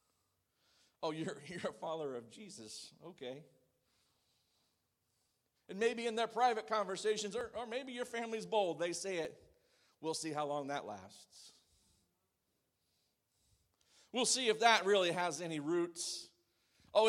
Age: 50-69